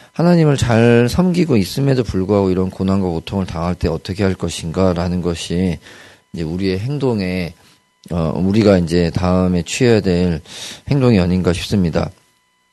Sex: male